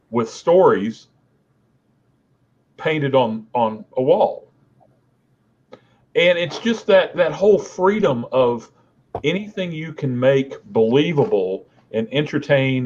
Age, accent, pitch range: 40-59, American, 120-165 Hz